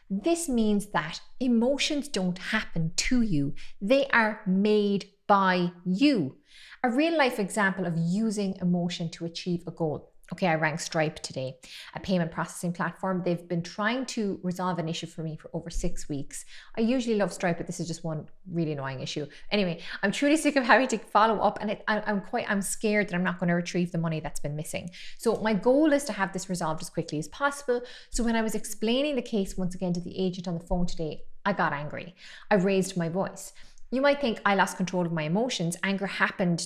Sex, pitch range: female, 170-210 Hz